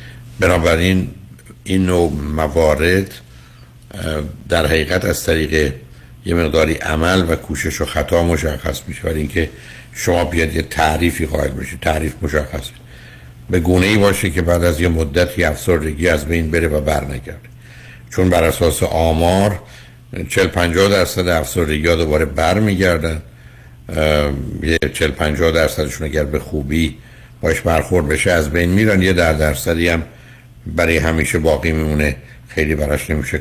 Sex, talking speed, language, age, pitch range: male, 135 wpm, Persian, 70-89, 75-95 Hz